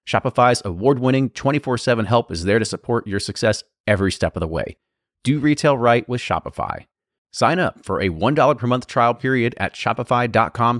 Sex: male